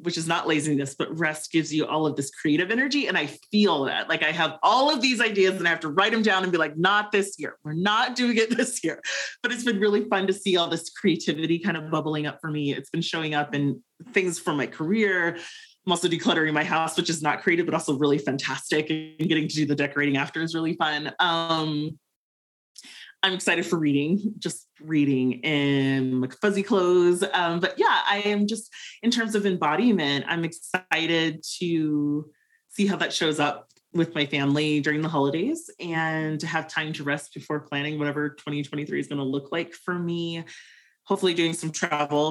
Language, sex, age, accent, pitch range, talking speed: English, male, 30-49, American, 150-190 Hz, 205 wpm